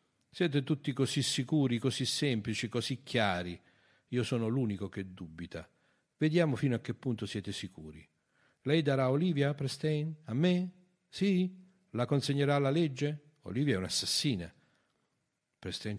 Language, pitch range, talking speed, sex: Italian, 100-135 Hz, 130 wpm, male